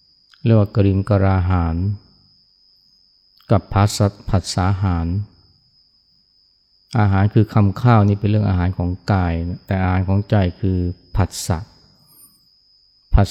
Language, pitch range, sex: Thai, 95-110 Hz, male